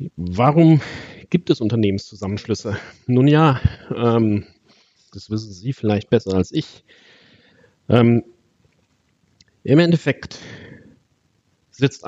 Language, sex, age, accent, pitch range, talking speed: German, male, 40-59, German, 105-130 Hz, 90 wpm